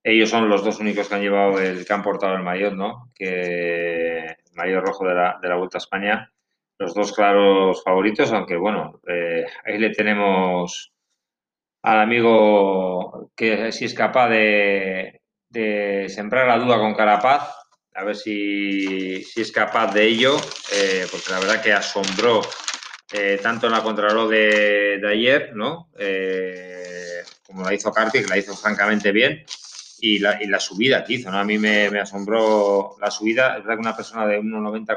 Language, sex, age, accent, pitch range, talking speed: Spanish, male, 20-39, Spanish, 100-115 Hz, 180 wpm